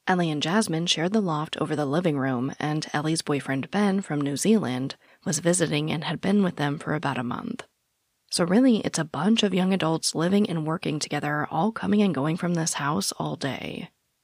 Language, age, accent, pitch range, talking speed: English, 20-39, American, 145-195 Hz, 205 wpm